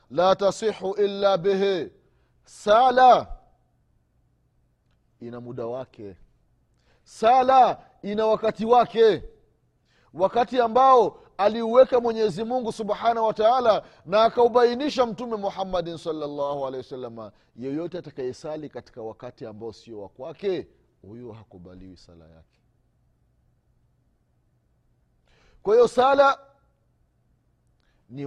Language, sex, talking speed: Swahili, male, 90 wpm